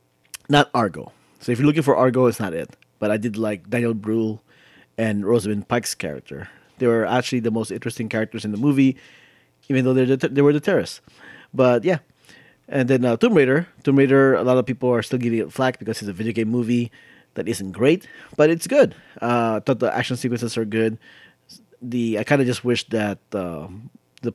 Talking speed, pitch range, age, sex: 210 wpm, 110-135 Hz, 30-49, male